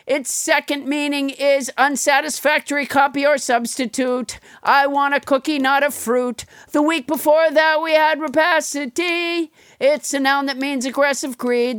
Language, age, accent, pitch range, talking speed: English, 50-69, American, 260-295 Hz, 150 wpm